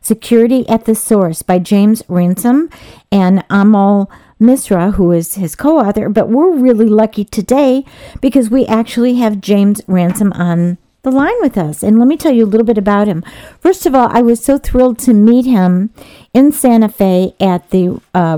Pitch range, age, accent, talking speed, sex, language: 190-255 Hz, 50-69, American, 185 wpm, female, English